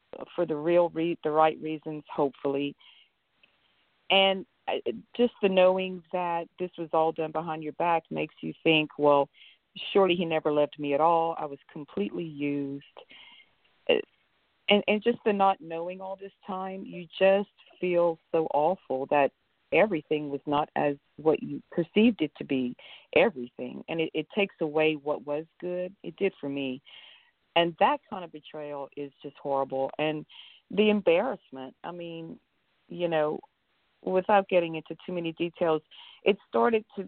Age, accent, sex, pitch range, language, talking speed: 40-59, American, female, 150-195 Hz, English, 160 wpm